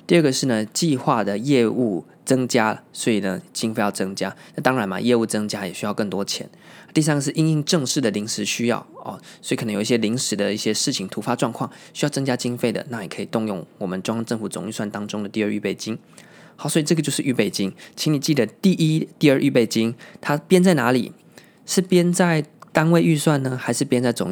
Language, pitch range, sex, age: Chinese, 110-150 Hz, male, 20-39